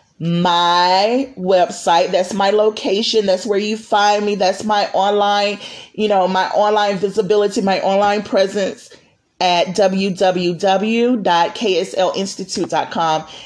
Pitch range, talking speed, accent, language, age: 175-210 Hz, 105 wpm, American, English, 30-49